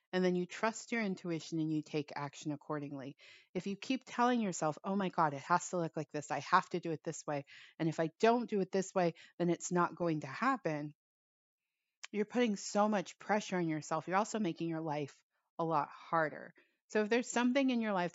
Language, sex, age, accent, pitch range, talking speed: English, female, 30-49, American, 155-195 Hz, 225 wpm